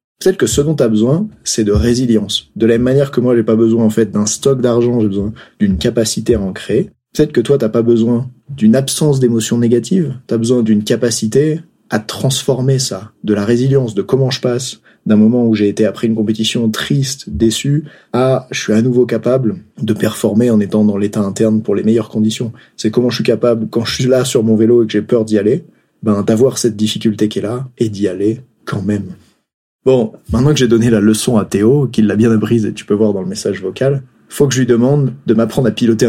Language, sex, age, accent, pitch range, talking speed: French, male, 30-49, French, 110-130 Hz, 240 wpm